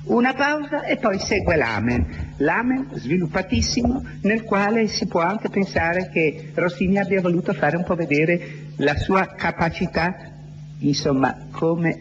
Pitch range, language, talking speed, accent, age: 125-200 Hz, Italian, 135 wpm, native, 60-79